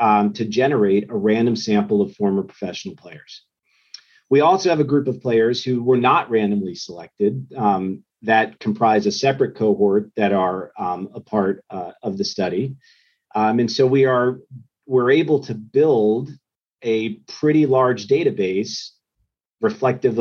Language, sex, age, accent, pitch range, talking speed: English, male, 40-59, American, 110-130 Hz, 145 wpm